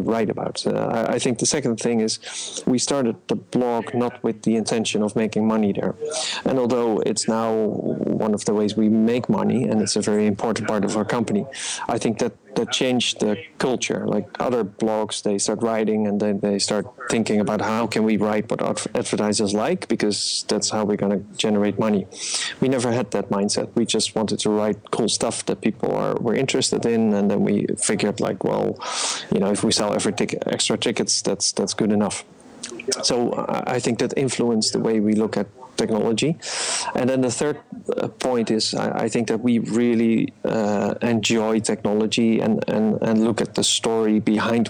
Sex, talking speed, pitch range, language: male, 195 wpm, 105-120 Hz, English